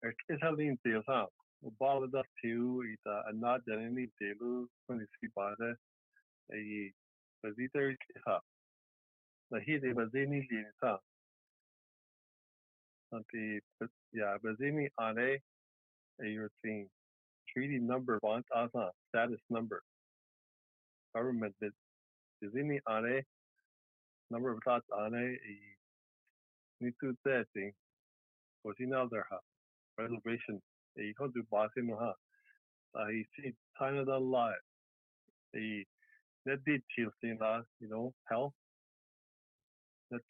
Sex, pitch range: male, 105-130 Hz